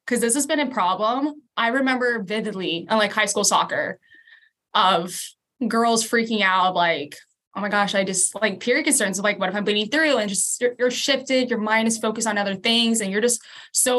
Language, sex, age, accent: English, female, 10-29, American